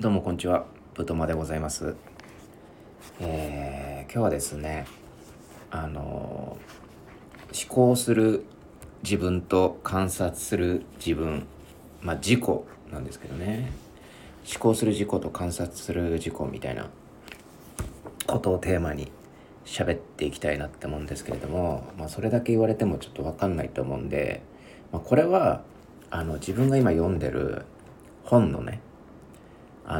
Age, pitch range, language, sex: 40-59, 70-100 Hz, Japanese, male